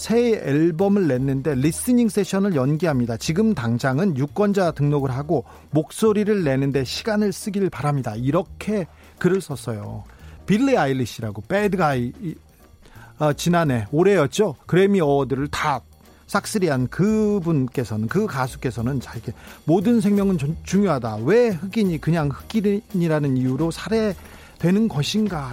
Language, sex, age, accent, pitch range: Korean, male, 40-59, native, 120-195 Hz